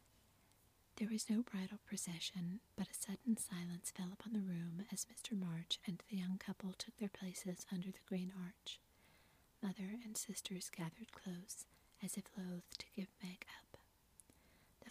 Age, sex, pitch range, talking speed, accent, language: 40-59, female, 180-205 Hz, 160 wpm, American, English